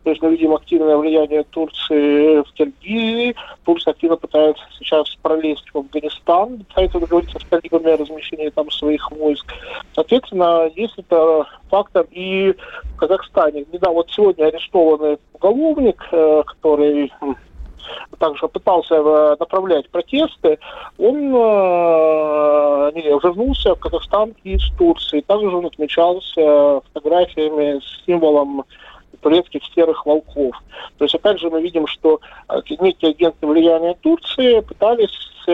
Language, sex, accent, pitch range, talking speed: Russian, male, native, 150-205 Hz, 120 wpm